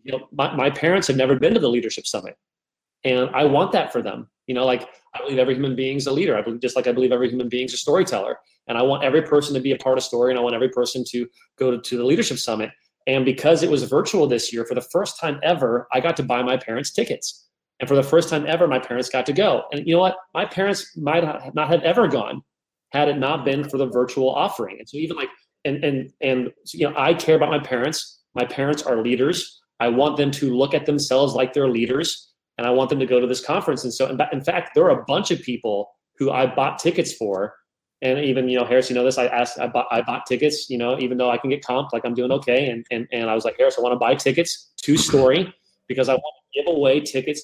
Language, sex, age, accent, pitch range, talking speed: English, male, 30-49, American, 125-150 Hz, 270 wpm